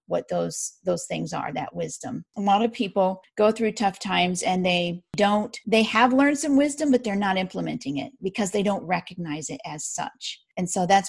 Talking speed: 205 wpm